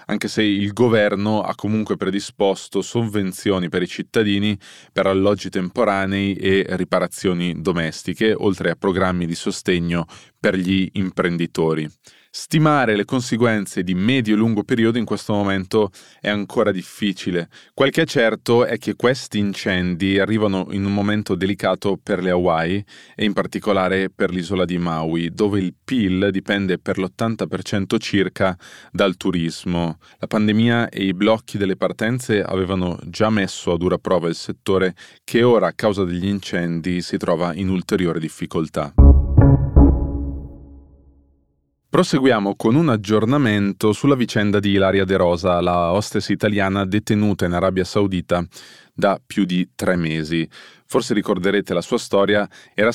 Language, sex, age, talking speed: Italian, male, 20-39, 140 wpm